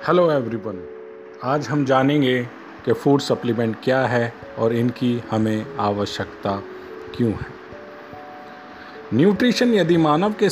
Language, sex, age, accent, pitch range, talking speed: Hindi, male, 40-59, native, 115-150 Hz, 115 wpm